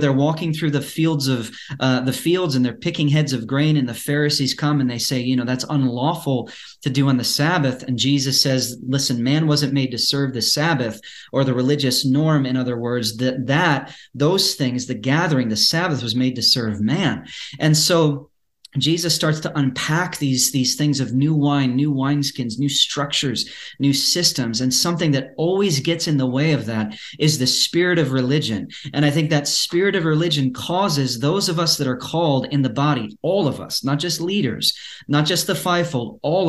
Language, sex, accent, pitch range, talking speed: English, male, American, 130-150 Hz, 200 wpm